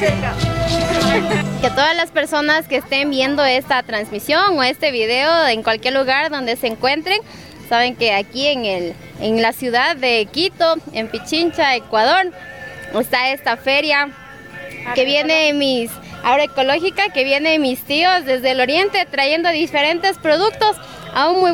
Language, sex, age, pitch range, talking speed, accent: Spanish, female, 20-39, 260-335 Hz, 140 wpm, Mexican